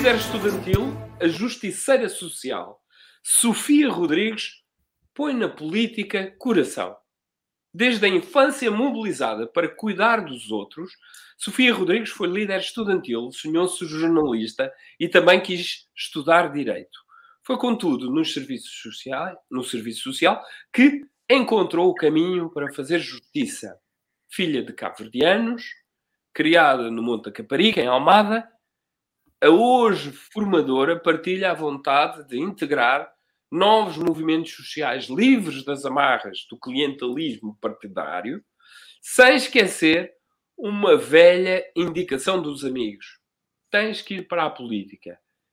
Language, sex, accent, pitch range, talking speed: Portuguese, male, Portuguese, 140-220 Hz, 115 wpm